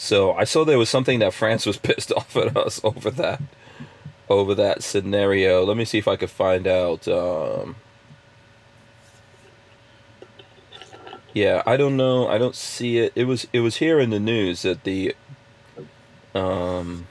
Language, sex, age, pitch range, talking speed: English, male, 30-49, 105-120 Hz, 160 wpm